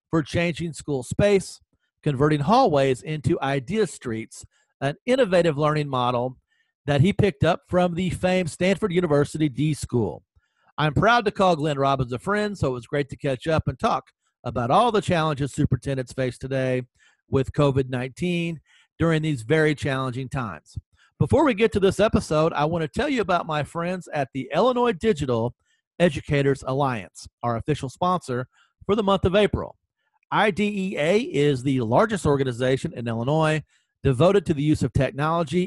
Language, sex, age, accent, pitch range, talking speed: English, male, 40-59, American, 135-190 Hz, 165 wpm